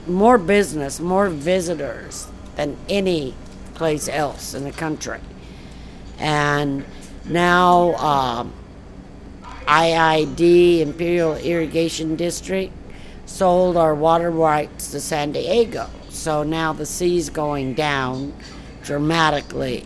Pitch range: 135-165 Hz